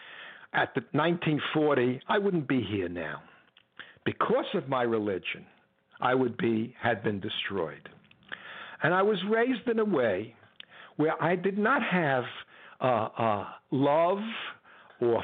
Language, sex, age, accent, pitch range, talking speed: English, male, 60-79, American, 125-190 Hz, 135 wpm